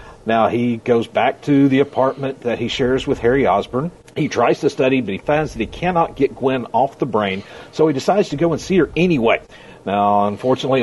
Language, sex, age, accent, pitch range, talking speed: English, male, 50-69, American, 125-165 Hz, 215 wpm